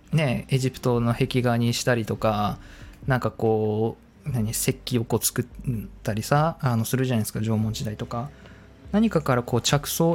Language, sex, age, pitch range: Japanese, male, 20-39, 115-150 Hz